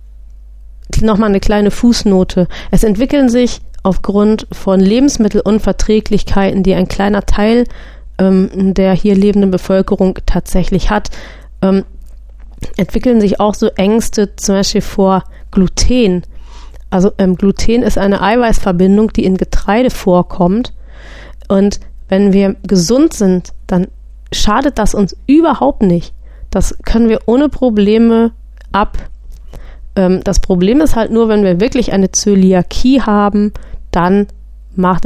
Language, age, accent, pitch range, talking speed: German, 30-49, German, 185-215 Hz, 120 wpm